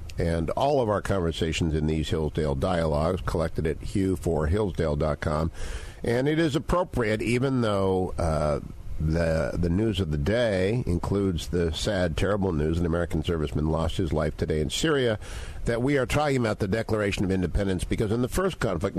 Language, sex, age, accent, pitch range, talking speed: English, male, 50-69, American, 85-120 Hz, 175 wpm